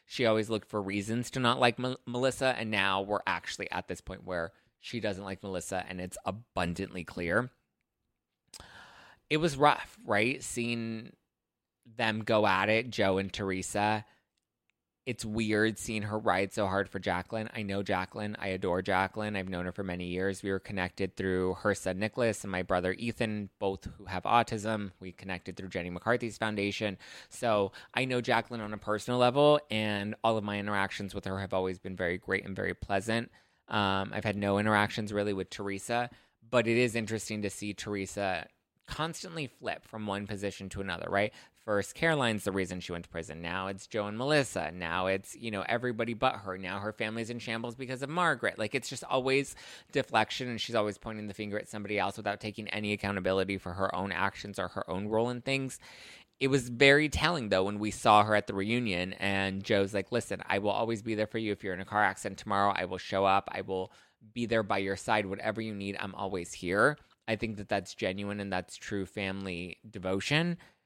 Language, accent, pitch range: English, American, 95-115 Hz